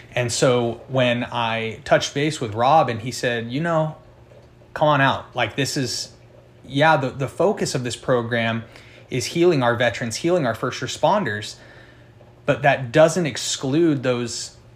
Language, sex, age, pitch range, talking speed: English, male, 30-49, 120-135 Hz, 160 wpm